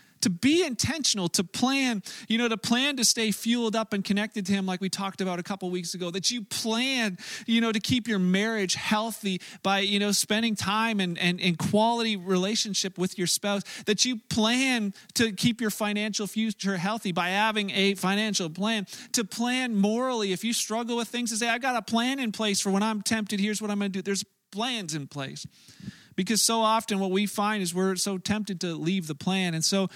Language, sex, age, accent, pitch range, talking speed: English, male, 40-59, American, 195-230 Hz, 215 wpm